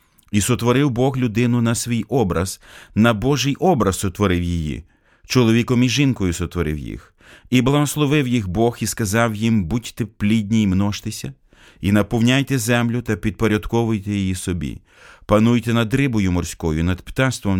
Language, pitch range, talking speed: Ukrainian, 95-125 Hz, 140 wpm